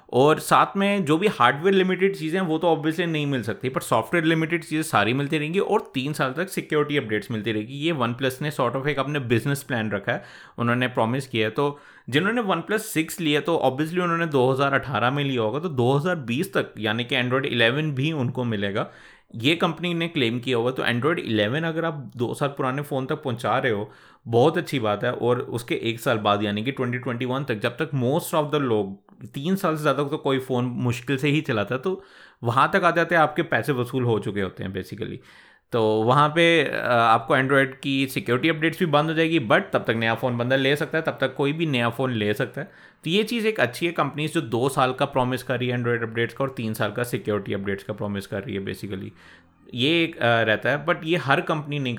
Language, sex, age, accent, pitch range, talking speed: Hindi, male, 30-49, native, 120-160 Hz, 235 wpm